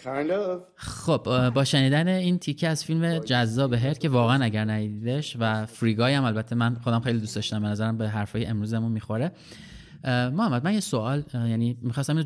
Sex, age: male, 30-49